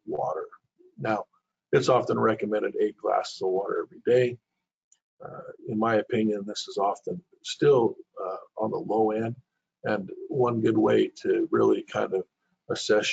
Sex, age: male, 50-69